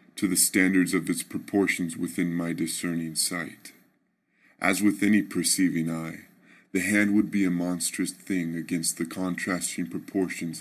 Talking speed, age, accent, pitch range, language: 145 wpm, 20-39, American, 85-90 Hz, English